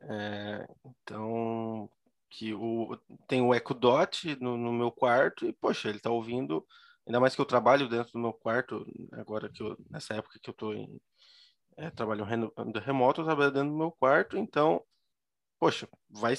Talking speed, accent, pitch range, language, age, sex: 170 wpm, Brazilian, 115-150 Hz, Portuguese, 20-39, male